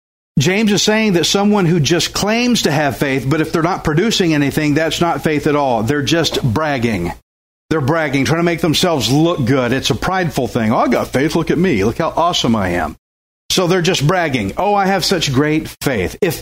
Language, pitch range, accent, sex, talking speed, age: English, 120-185 Hz, American, male, 220 wpm, 50-69